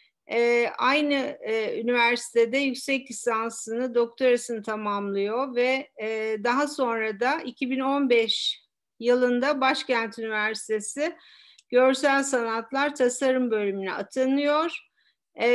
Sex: female